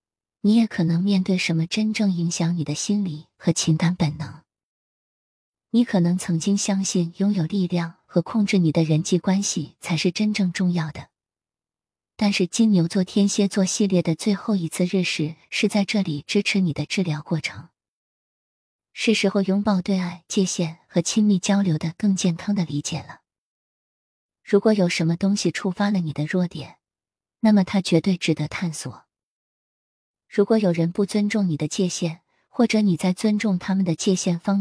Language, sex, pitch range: Chinese, female, 165-200 Hz